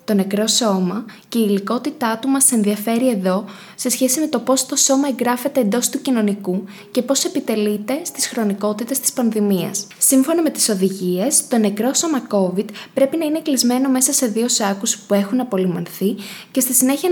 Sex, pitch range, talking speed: female, 200-260 Hz, 175 wpm